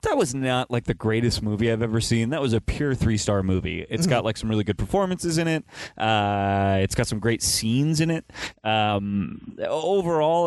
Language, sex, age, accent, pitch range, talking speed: English, male, 30-49, American, 105-130 Hz, 200 wpm